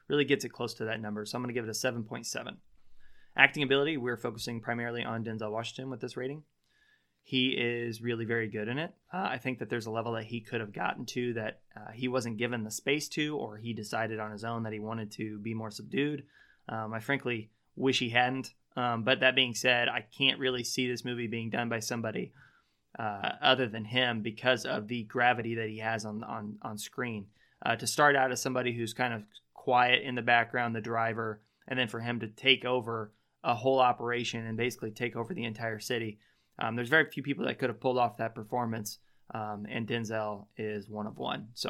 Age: 20-39